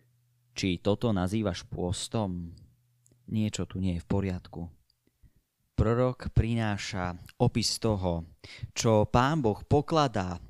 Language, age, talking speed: Slovak, 20-39, 105 wpm